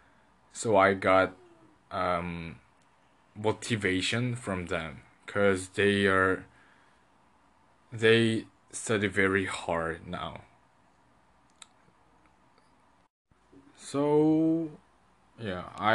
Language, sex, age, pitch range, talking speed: English, male, 20-39, 90-110 Hz, 65 wpm